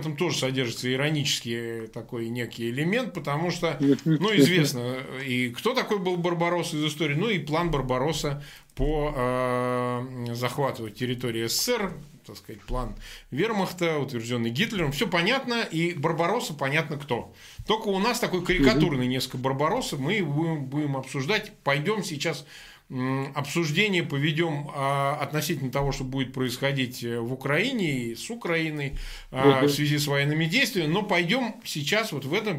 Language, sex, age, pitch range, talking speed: Russian, male, 20-39, 135-175 Hz, 135 wpm